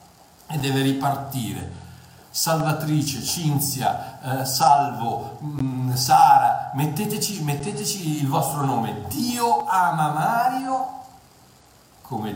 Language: Italian